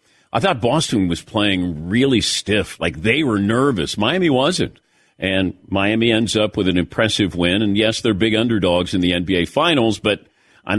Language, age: English, 50-69